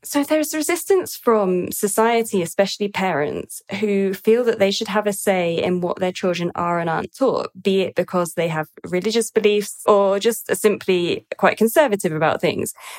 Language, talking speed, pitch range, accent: English, 170 wpm, 180-230 Hz, British